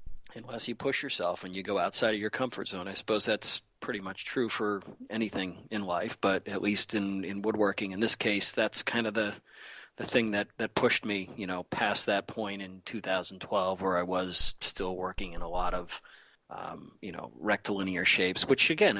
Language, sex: English, male